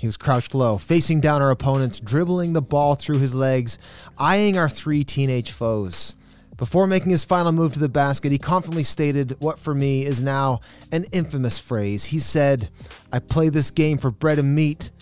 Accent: American